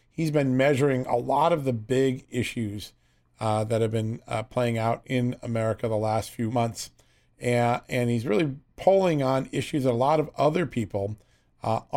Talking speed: 180 wpm